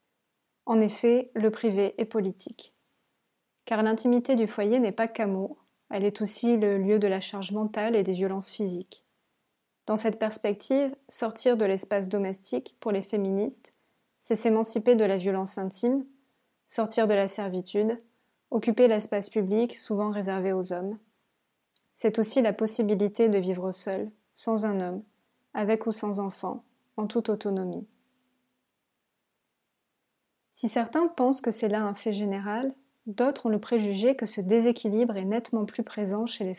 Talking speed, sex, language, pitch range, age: 150 wpm, female, French, 200-235 Hz, 20-39